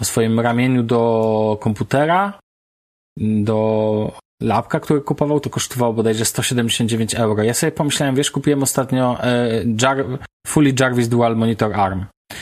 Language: Polish